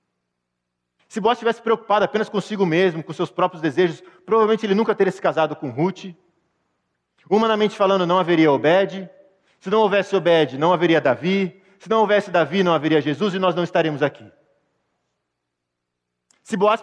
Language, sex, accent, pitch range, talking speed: Portuguese, male, Brazilian, 150-205 Hz, 160 wpm